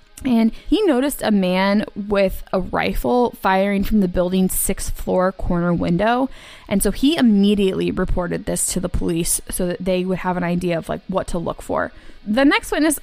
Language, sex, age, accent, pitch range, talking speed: English, female, 20-39, American, 185-240 Hz, 190 wpm